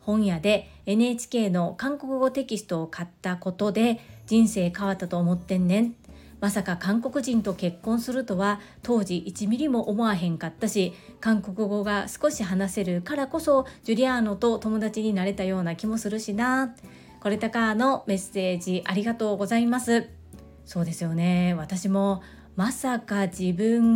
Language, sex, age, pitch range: Japanese, female, 40-59, 180-230 Hz